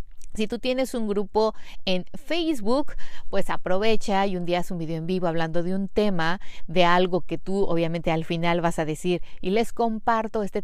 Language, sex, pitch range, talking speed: Spanish, female, 175-230 Hz, 195 wpm